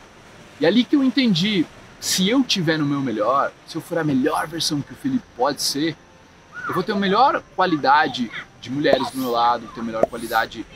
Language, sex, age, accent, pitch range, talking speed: Portuguese, male, 20-39, Brazilian, 125-175 Hz, 210 wpm